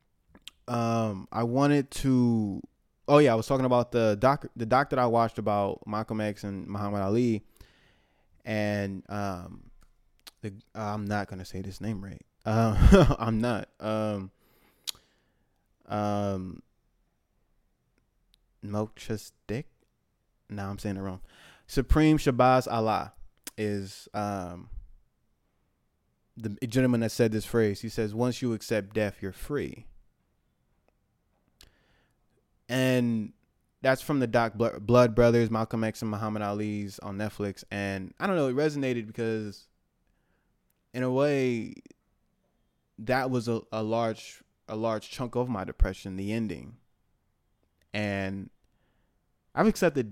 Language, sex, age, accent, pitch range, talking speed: English, male, 20-39, American, 100-120 Hz, 130 wpm